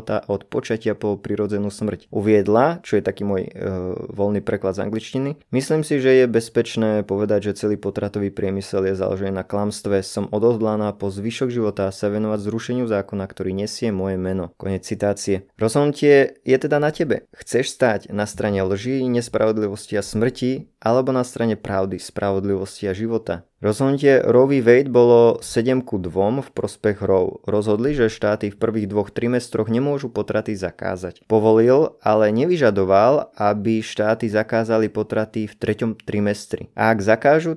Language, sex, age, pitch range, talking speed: Slovak, male, 20-39, 100-120 Hz, 155 wpm